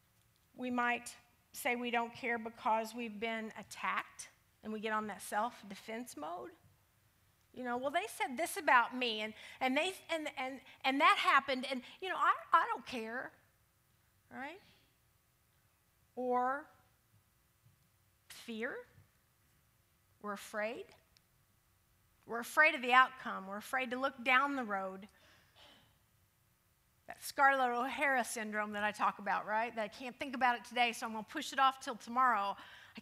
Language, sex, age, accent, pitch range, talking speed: English, female, 40-59, American, 220-290 Hz, 150 wpm